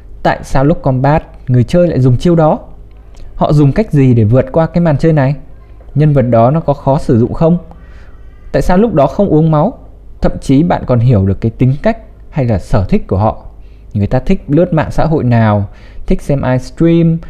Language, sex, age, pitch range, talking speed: Vietnamese, male, 20-39, 110-150 Hz, 220 wpm